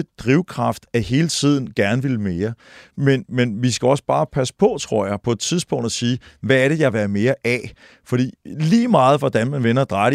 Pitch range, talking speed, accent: 115-145 Hz, 225 wpm, native